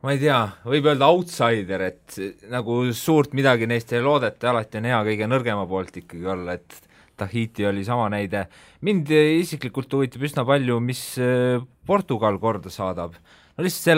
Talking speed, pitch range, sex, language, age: 160 wpm, 105-135 Hz, male, English, 20-39